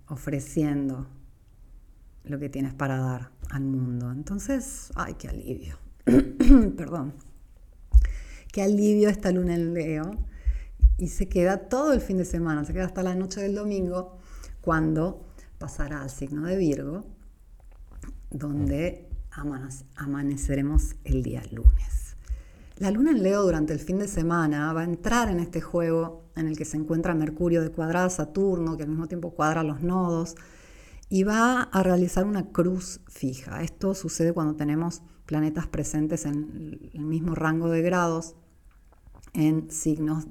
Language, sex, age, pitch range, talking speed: Spanish, female, 40-59, 140-180 Hz, 145 wpm